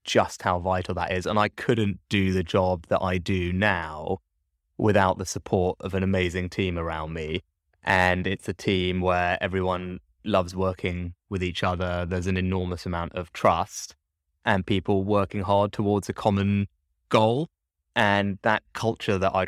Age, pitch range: 20-39, 90-105 Hz